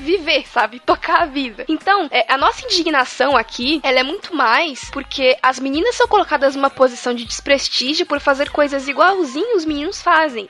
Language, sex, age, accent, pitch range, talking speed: Portuguese, female, 10-29, Brazilian, 255-355 Hz, 175 wpm